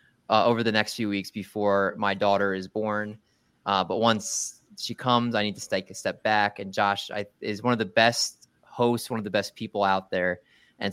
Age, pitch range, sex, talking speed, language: 20-39, 100-120 Hz, male, 215 wpm, English